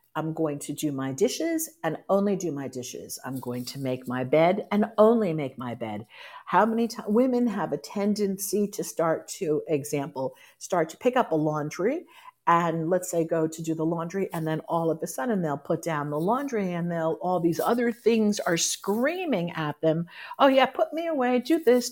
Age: 50-69